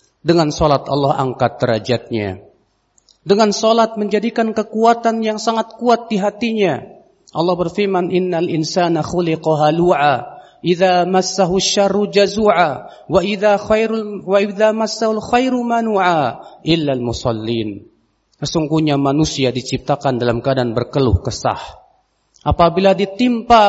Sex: male